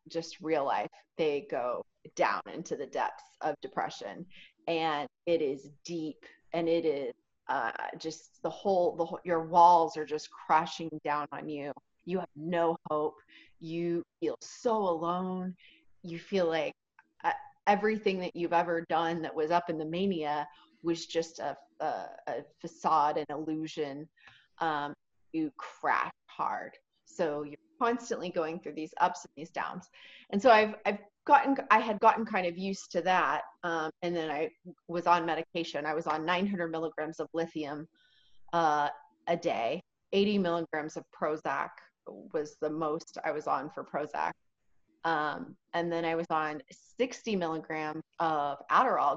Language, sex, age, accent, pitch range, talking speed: English, female, 30-49, American, 155-185 Hz, 155 wpm